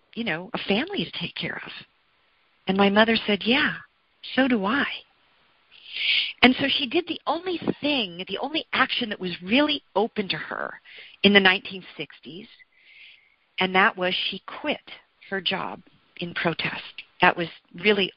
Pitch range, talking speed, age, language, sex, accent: 180-230 Hz, 155 wpm, 50-69, English, female, American